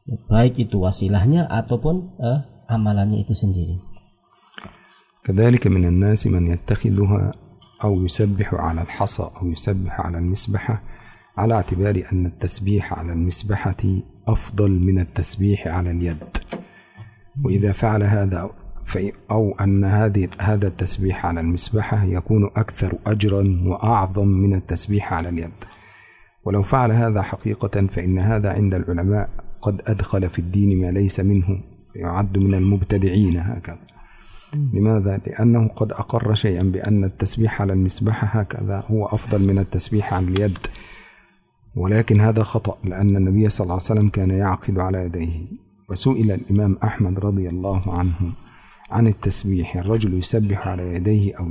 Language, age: Indonesian, 50-69